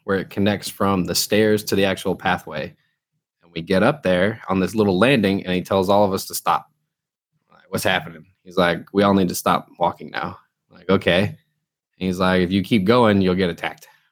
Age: 20-39